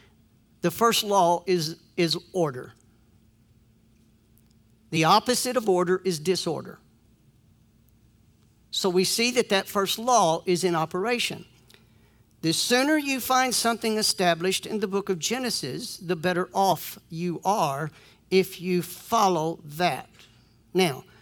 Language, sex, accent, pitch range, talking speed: English, male, American, 155-205 Hz, 120 wpm